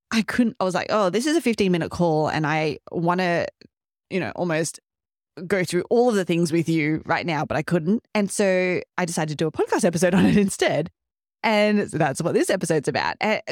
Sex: female